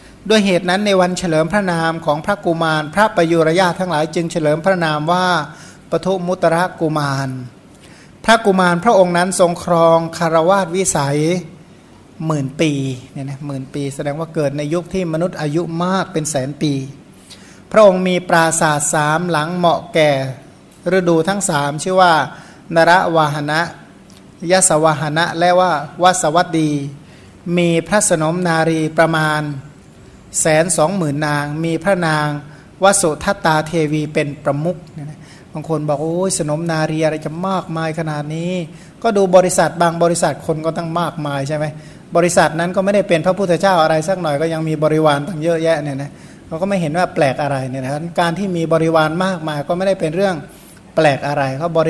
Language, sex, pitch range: Thai, male, 150-180 Hz